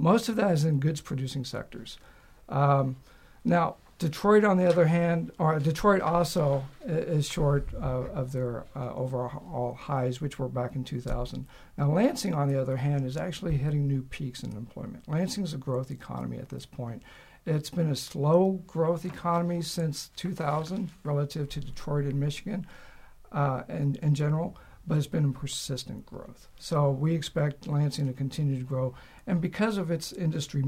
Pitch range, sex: 135-165 Hz, male